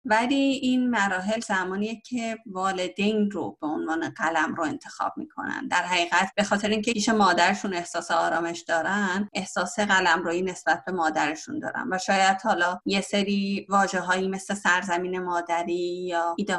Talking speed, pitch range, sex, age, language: 145 wpm, 180-215 Hz, female, 30-49, Persian